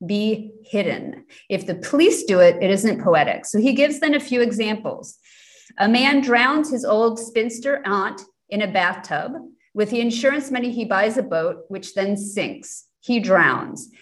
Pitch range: 185-240 Hz